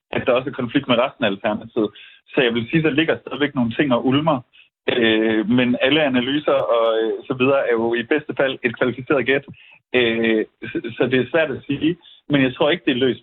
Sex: male